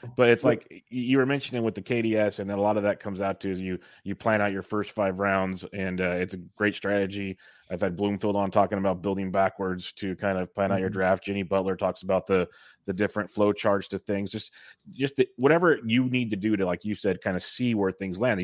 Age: 30-49